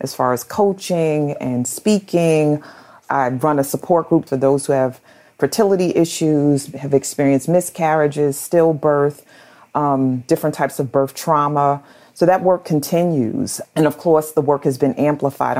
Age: 40-59